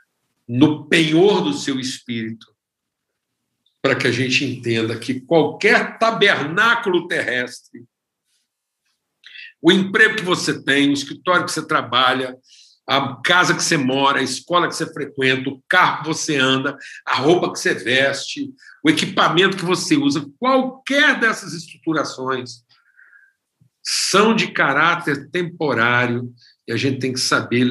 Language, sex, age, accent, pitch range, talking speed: Portuguese, male, 60-79, Brazilian, 125-170 Hz, 135 wpm